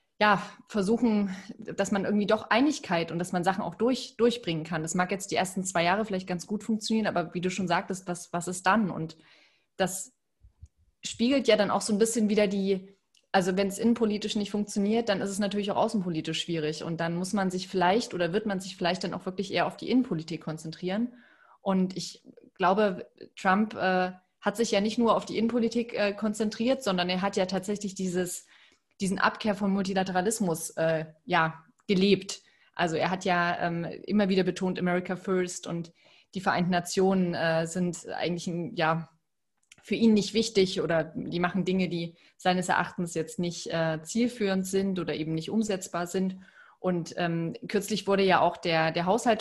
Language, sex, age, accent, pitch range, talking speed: German, female, 20-39, German, 175-205 Hz, 185 wpm